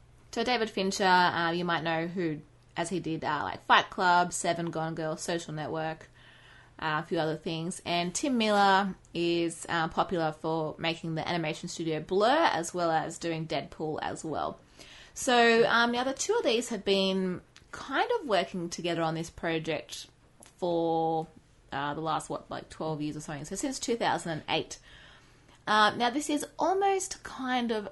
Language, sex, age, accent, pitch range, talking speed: English, female, 20-39, Australian, 160-195 Hz, 175 wpm